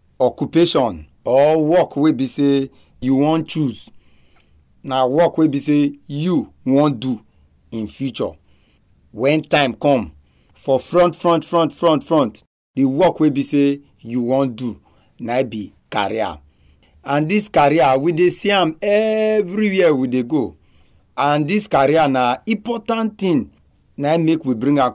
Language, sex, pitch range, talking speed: English, male, 110-155 Hz, 145 wpm